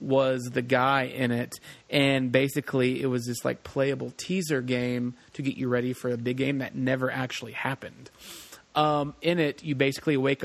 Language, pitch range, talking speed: English, 125-145 Hz, 185 wpm